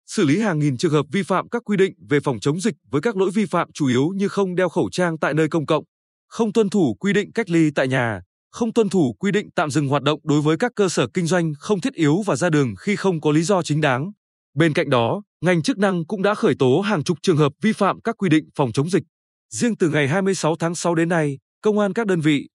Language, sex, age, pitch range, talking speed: Vietnamese, male, 20-39, 145-200 Hz, 275 wpm